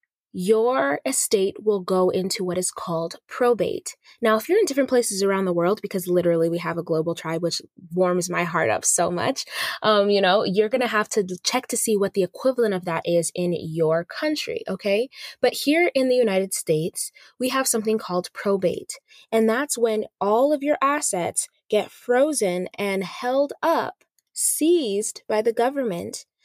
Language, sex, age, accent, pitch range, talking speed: English, female, 20-39, American, 180-245 Hz, 180 wpm